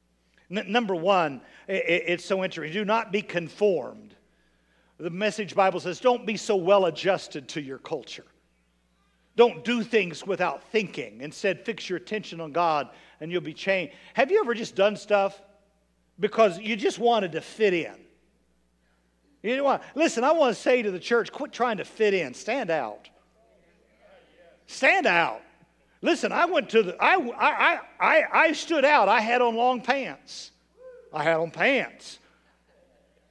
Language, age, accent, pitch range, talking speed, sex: English, 50-69, American, 180-275 Hz, 160 wpm, male